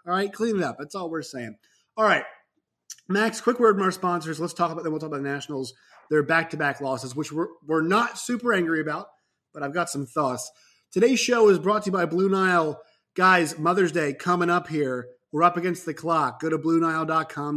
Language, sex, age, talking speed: English, male, 30-49, 220 wpm